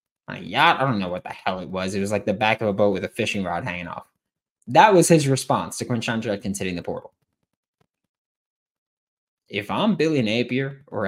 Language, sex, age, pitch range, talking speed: English, male, 20-39, 115-160 Hz, 210 wpm